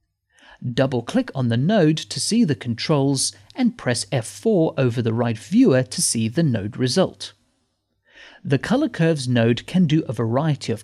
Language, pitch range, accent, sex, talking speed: English, 115-170 Hz, British, male, 160 wpm